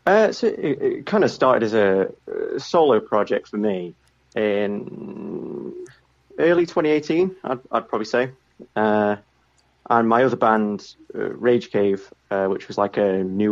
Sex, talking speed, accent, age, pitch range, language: male, 150 wpm, British, 30-49, 95-125 Hz, English